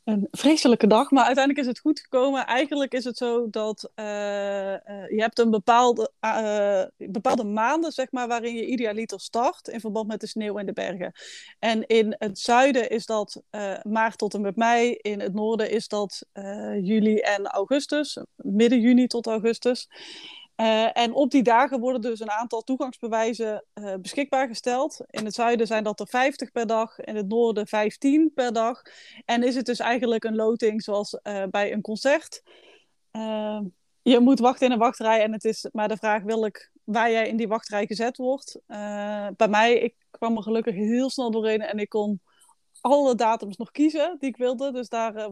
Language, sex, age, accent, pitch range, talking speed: Dutch, female, 20-39, Dutch, 215-255 Hz, 195 wpm